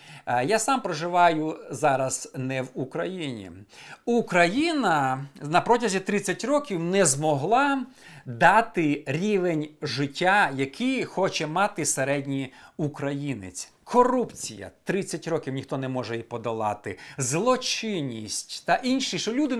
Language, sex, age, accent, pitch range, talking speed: Ukrainian, male, 50-69, native, 150-230 Hz, 105 wpm